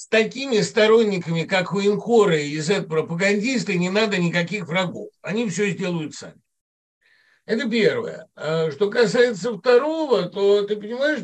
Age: 60-79